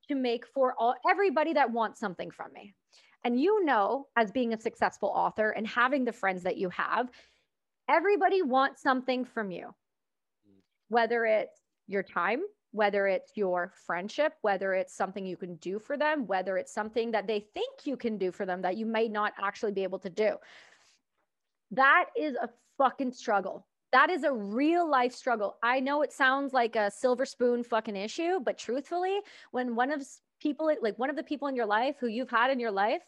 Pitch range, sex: 215-285 Hz, female